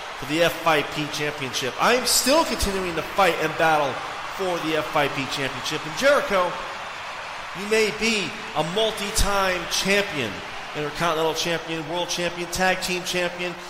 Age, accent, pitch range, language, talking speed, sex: 30-49, American, 180-235 Hz, English, 130 wpm, male